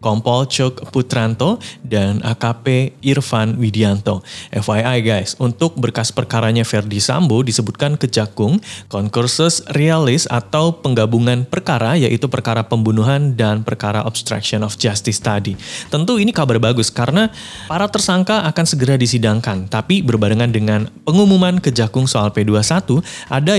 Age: 20-39